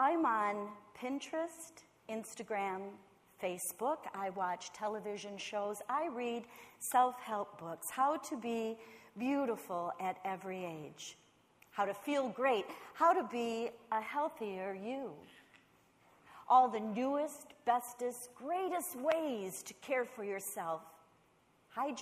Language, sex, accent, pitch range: English, female, American, 210-285 Hz